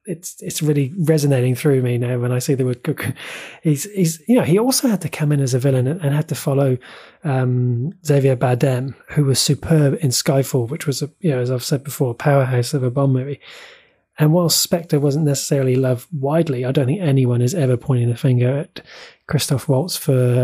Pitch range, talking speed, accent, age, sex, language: 130-160 Hz, 215 wpm, British, 20-39, male, English